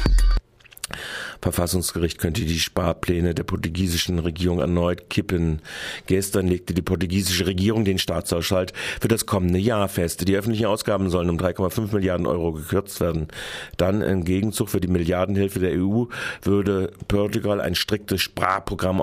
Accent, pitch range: German, 85-100 Hz